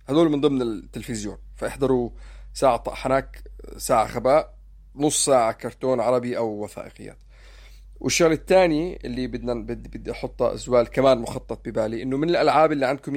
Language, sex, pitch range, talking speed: Arabic, male, 115-145 Hz, 140 wpm